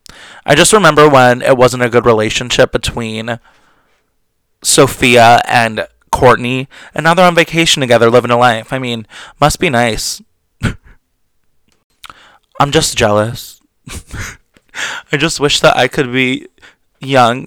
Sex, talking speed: male, 130 wpm